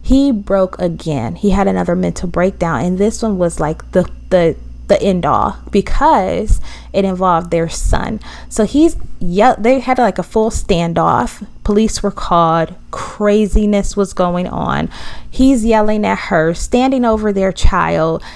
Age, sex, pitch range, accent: 20-39, female, 175-250 Hz, American